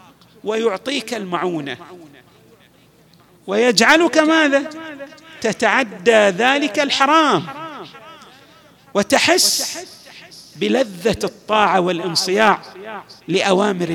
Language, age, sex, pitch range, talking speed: Arabic, 50-69, male, 195-275 Hz, 50 wpm